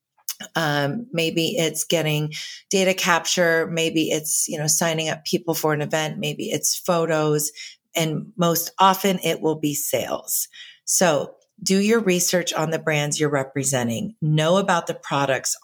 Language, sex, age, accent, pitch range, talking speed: English, female, 40-59, American, 150-175 Hz, 150 wpm